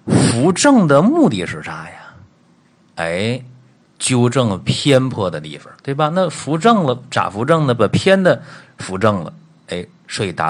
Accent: native